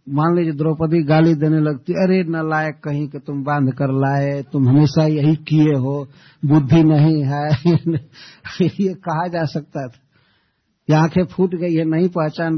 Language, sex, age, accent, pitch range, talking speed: Hindi, male, 60-79, native, 130-165 Hz, 160 wpm